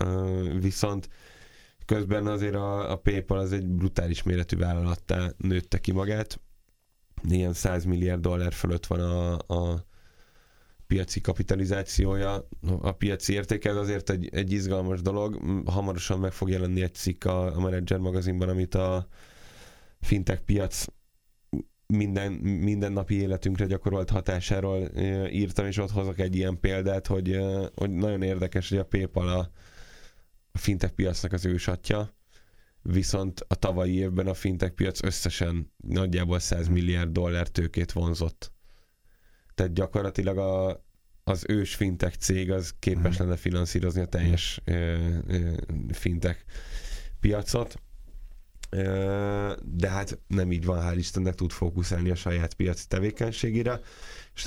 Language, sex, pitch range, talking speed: Hungarian, male, 90-100 Hz, 130 wpm